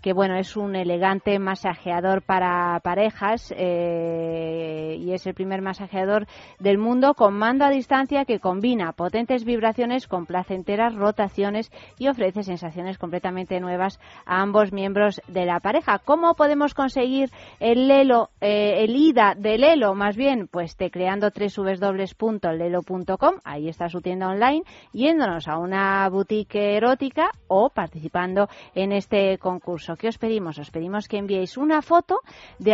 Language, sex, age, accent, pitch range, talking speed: Spanish, female, 30-49, Spanish, 180-225 Hz, 145 wpm